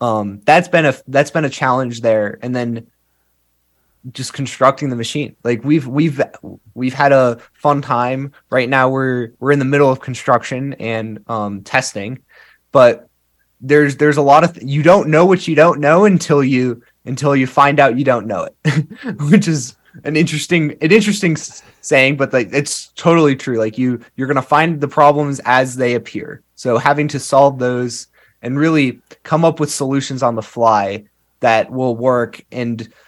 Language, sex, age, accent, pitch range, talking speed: English, male, 20-39, American, 120-145 Hz, 180 wpm